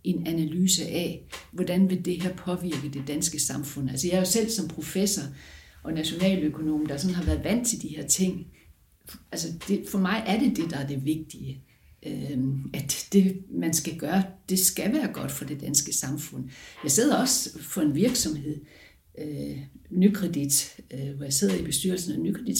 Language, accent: Danish, native